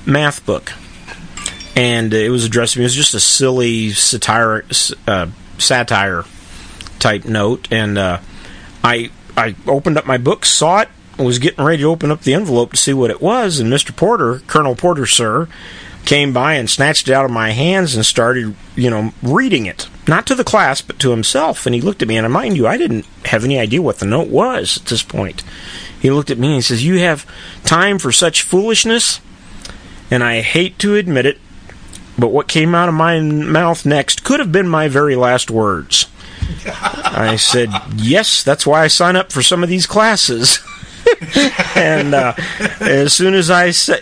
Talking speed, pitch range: 195 wpm, 100-145 Hz